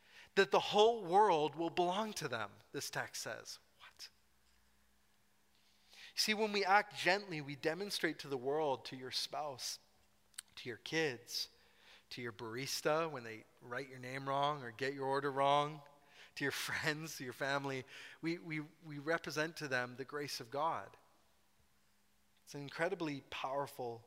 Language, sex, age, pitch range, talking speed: English, male, 30-49, 125-155 Hz, 155 wpm